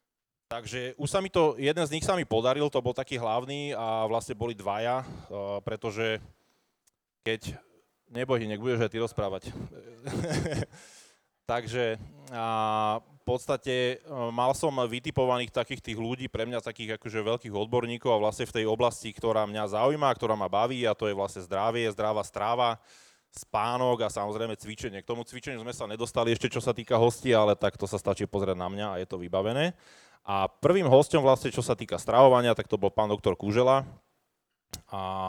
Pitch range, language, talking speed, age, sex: 100-125 Hz, Slovak, 175 wpm, 20-39, male